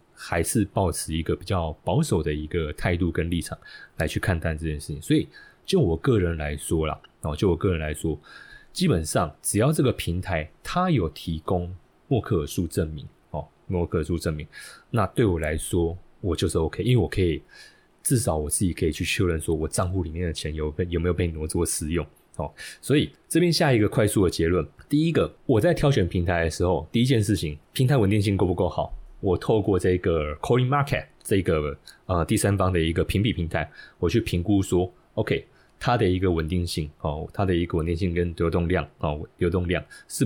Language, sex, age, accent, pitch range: Chinese, male, 20-39, native, 80-105 Hz